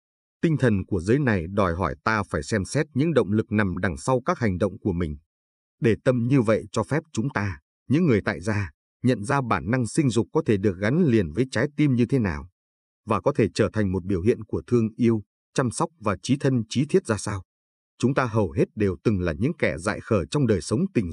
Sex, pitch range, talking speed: male, 95-130 Hz, 245 wpm